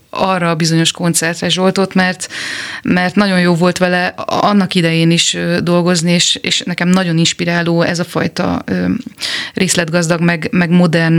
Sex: female